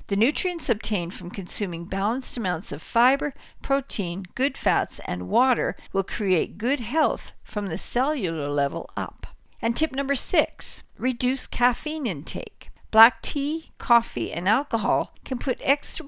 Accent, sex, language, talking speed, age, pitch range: American, female, English, 140 wpm, 50-69, 180-245 Hz